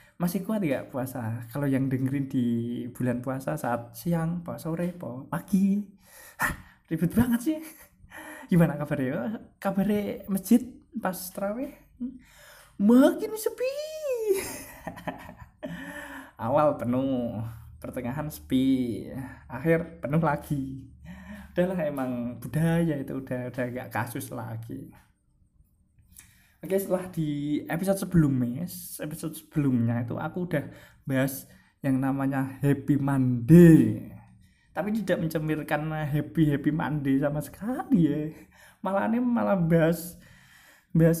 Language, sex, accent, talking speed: Indonesian, male, native, 110 wpm